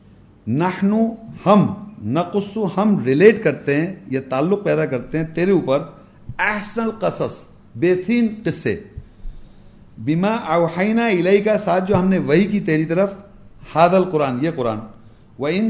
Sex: male